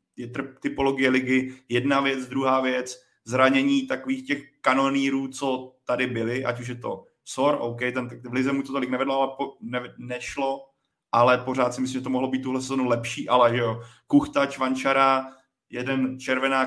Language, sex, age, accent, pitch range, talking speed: Czech, male, 20-39, native, 120-135 Hz, 165 wpm